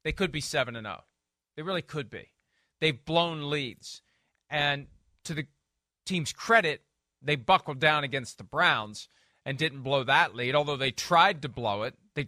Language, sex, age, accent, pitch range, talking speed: English, male, 40-59, American, 145-185 Hz, 170 wpm